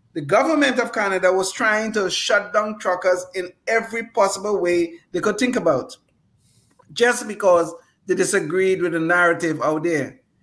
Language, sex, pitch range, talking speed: English, male, 160-210 Hz, 155 wpm